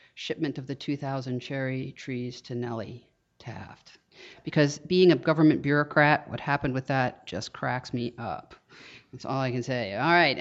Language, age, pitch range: English, 50-69, 130-155 Hz